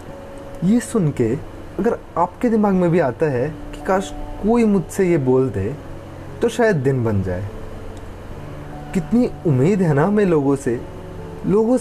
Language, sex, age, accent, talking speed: Hindi, male, 20-39, native, 150 wpm